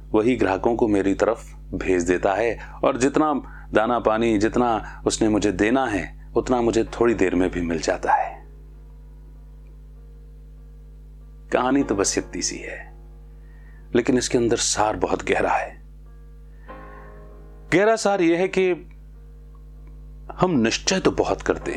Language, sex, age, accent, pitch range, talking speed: English, male, 40-59, Indian, 75-115 Hz, 130 wpm